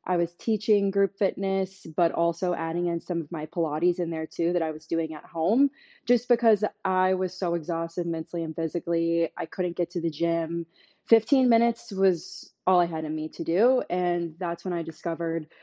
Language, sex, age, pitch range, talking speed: English, female, 20-39, 170-190 Hz, 200 wpm